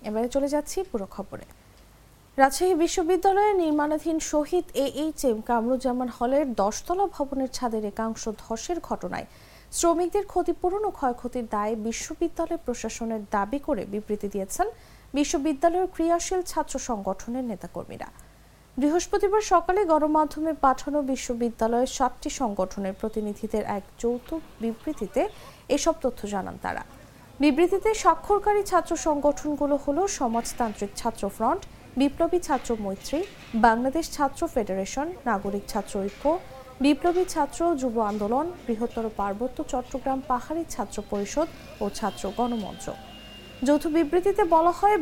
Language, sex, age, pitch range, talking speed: English, female, 50-69, 230-330 Hz, 105 wpm